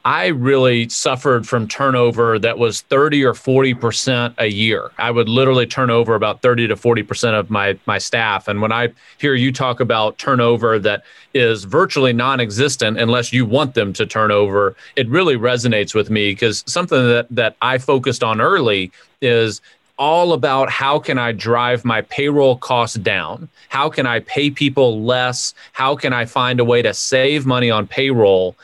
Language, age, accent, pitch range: English, 30-49, American, 115-135 Hz